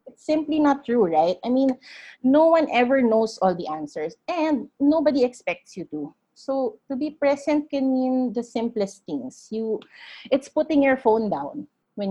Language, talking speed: English, 175 wpm